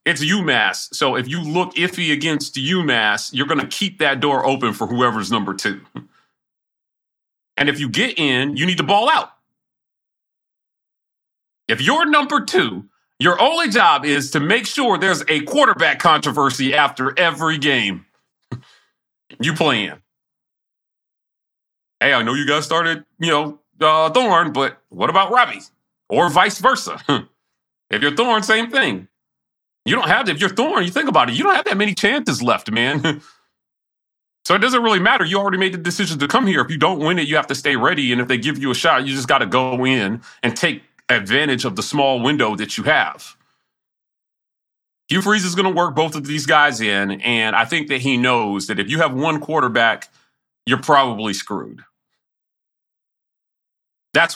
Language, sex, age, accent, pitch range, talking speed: English, male, 40-59, American, 130-185 Hz, 180 wpm